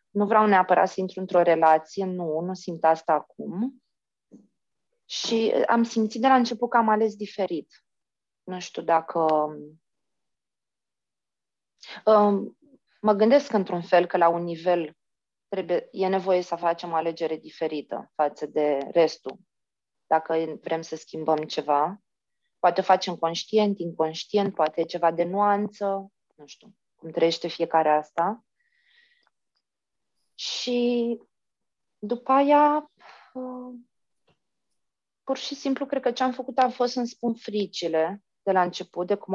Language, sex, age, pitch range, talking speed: Romanian, female, 20-39, 170-220 Hz, 130 wpm